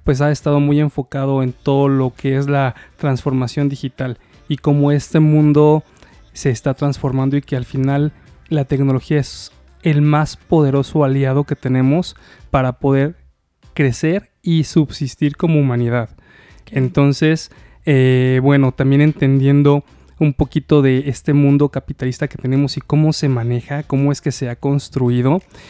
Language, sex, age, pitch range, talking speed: Spanish, male, 20-39, 130-150 Hz, 145 wpm